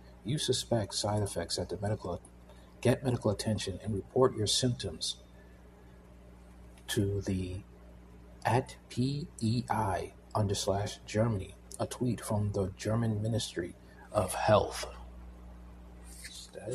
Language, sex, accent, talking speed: English, male, American, 115 wpm